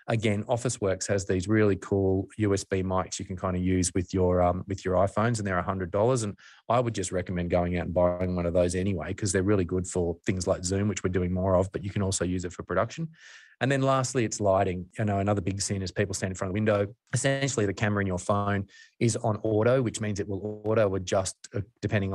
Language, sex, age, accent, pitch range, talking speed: English, male, 20-39, Australian, 95-110 Hz, 245 wpm